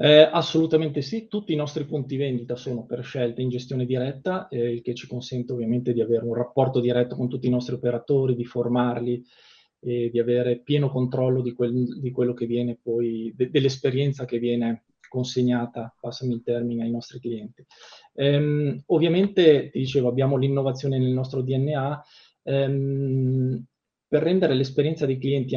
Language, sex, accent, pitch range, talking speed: Italian, male, native, 120-140 Hz, 165 wpm